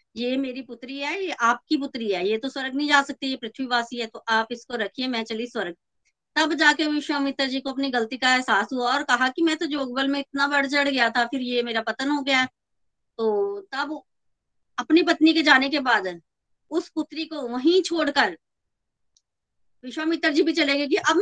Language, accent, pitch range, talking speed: Hindi, native, 235-300 Hz, 205 wpm